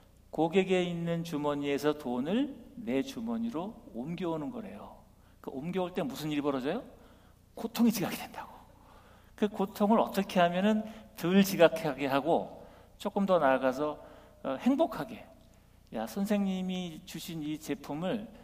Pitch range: 135-220 Hz